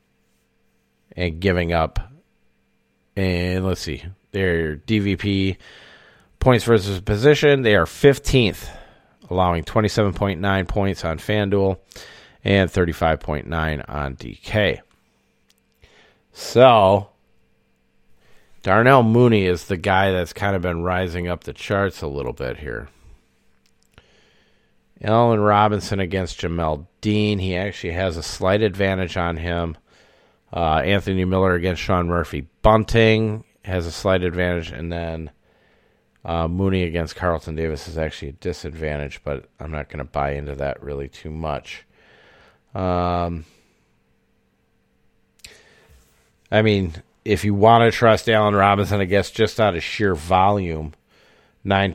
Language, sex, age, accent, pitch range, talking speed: English, male, 40-59, American, 75-100 Hz, 120 wpm